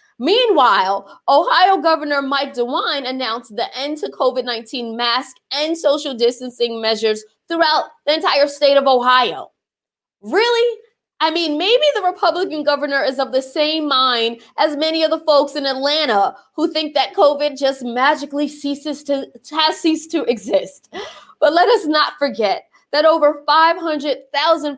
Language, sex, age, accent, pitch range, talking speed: English, female, 20-39, American, 240-310 Hz, 145 wpm